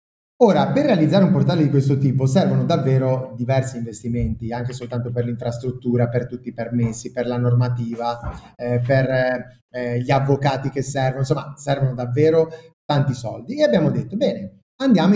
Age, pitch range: 30-49, 125-165 Hz